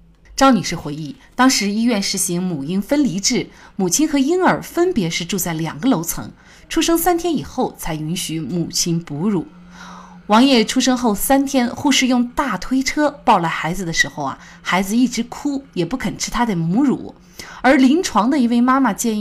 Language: Chinese